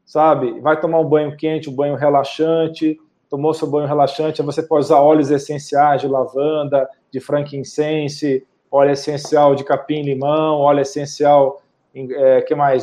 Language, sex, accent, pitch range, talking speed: Portuguese, male, Brazilian, 145-170 Hz, 140 wpm